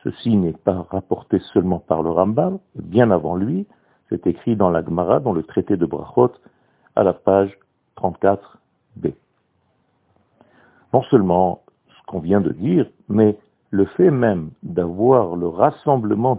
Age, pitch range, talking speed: 60-79, 90-120 Hz, 140 wpm